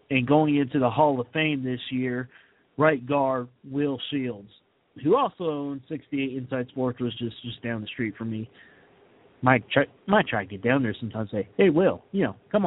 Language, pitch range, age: English, 120-150 Hz, 40-59